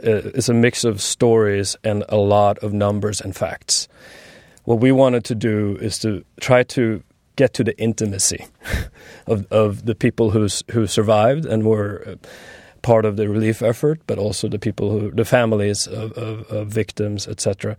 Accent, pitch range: Swedish, 105-115 Hz